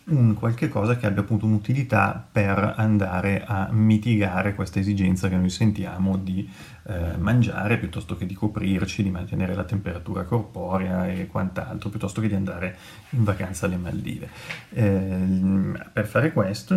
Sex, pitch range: male, 95-110 Hz